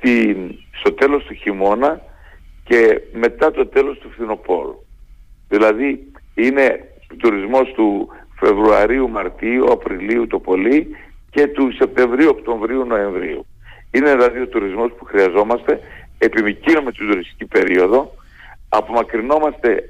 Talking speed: 105 wpm